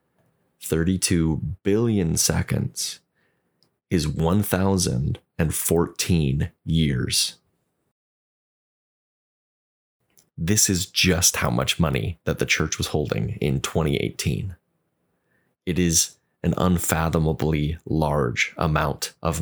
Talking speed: 80 wpm